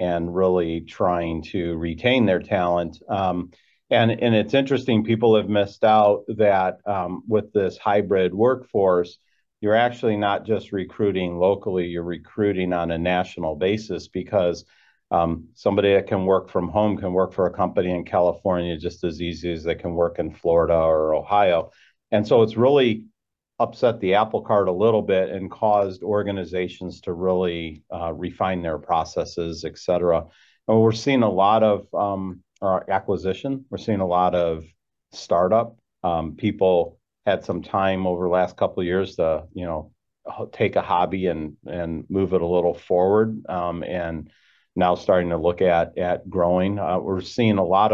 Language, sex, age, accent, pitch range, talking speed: English, male, 40-59, American, 85-105 Hz, 170 wpm